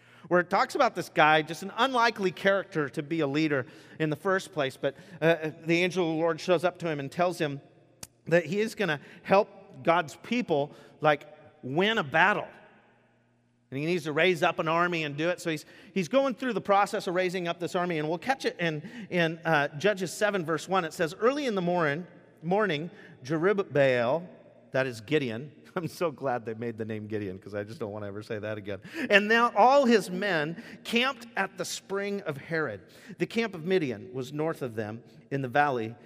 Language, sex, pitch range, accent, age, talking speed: English, male, 125-185 Hz, American, 40-59, 215 wpm